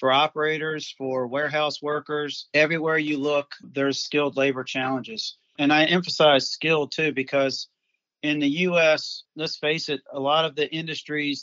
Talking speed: 150 wpm